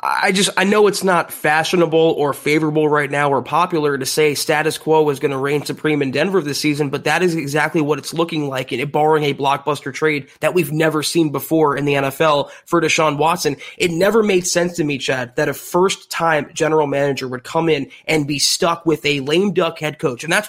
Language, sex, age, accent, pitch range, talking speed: English, male, 20-39, American, 150-190 Hz, 230 wpm